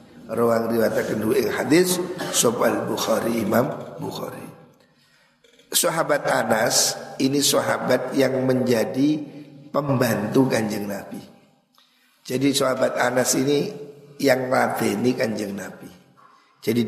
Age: 50-69